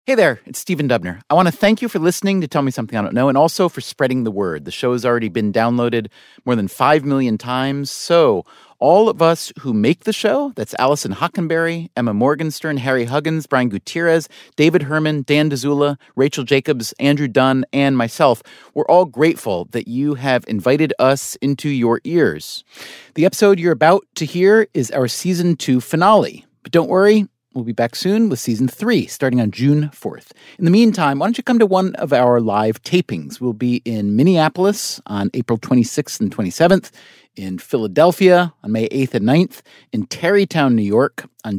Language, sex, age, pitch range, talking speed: English, male, 30-49, 125-175 Hz, 190 wpm